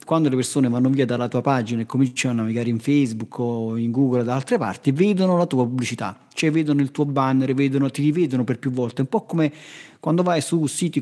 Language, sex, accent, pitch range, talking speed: Italian, male, native, 125-150 Hz, 235 wpm